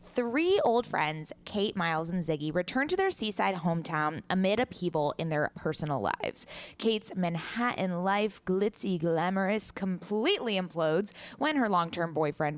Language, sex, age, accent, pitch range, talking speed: English, female, 20-39, American, 165-215 Hz, 140 wpm